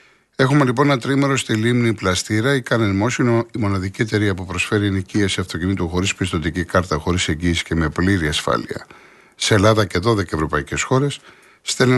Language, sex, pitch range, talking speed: Greek, male, 95-120 Hz, 170 wpm